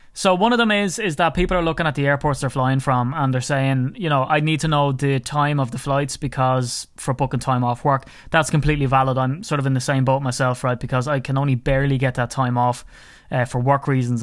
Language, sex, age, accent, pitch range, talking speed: English, male, 20-39, Irish, 125-145 Hz, 255 wpm